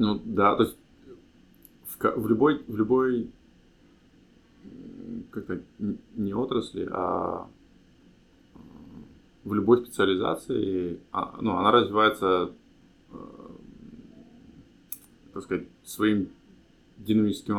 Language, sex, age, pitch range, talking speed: English, male, 20-39, 90-105 Hz, 80 wpm